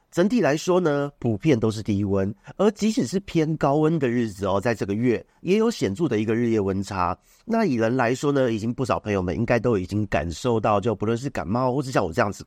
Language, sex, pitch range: Chinese, male, 105-155 Hz